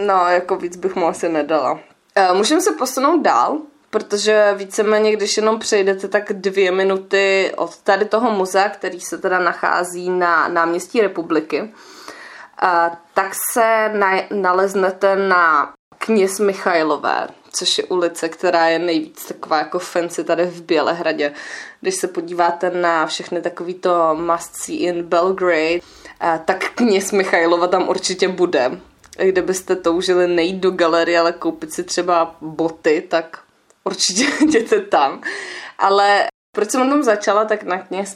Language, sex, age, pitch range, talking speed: Slovak, female, 20-39, 175-215 Hz, 150 wpm